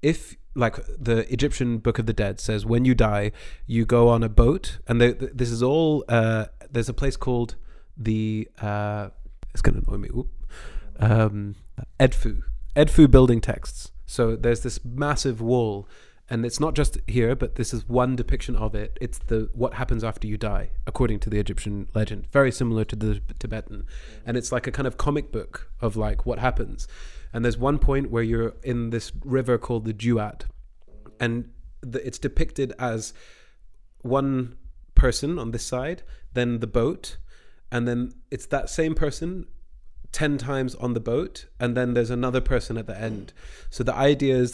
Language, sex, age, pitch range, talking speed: English, male, 30-49, 110-130 Hz, 180 wpm